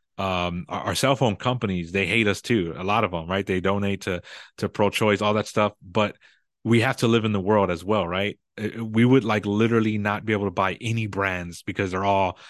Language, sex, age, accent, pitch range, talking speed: English, male, 30-49, American, 95-115 Hz, 235 wpm